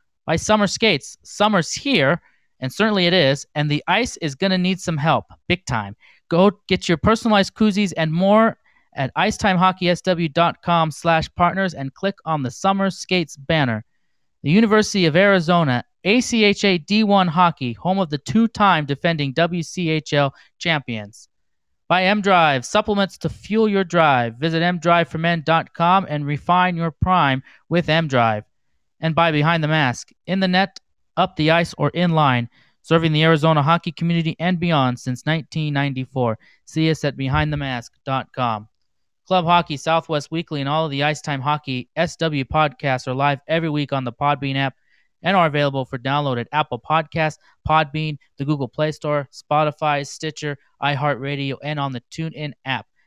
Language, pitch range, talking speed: English, 140-175 Hz, 155 wpm